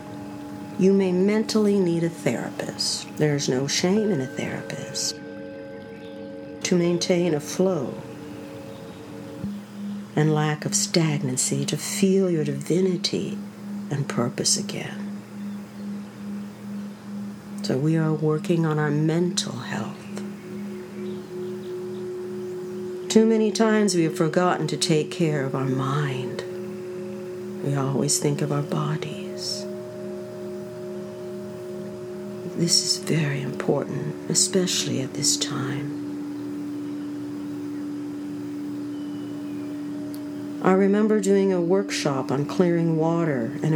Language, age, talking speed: English, 60-79, 95 wpm